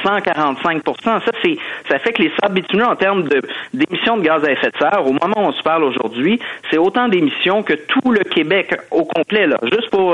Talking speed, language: 225 wpm, French